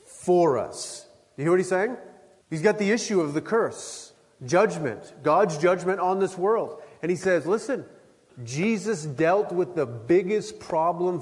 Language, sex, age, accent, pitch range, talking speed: English, male, 40-59, American, 145-185 Hz, 160 wpm